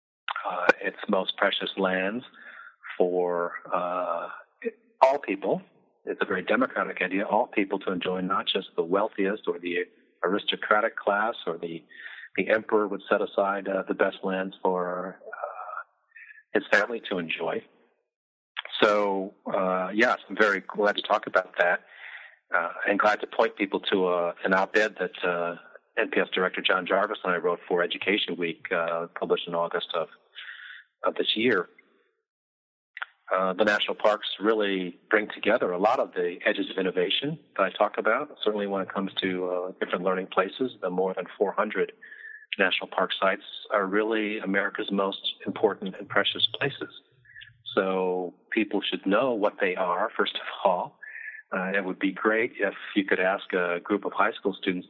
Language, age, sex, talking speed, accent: English, 40-59, male, 165 wpm, American